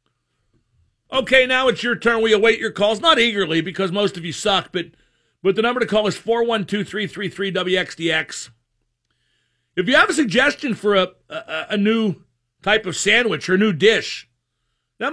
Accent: American